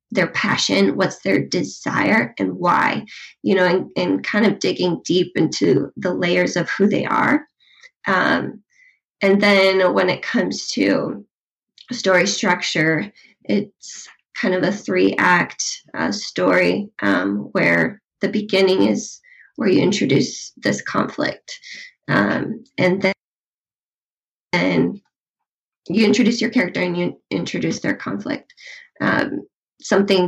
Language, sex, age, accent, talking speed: English, female, 20-39, American, 125 wpm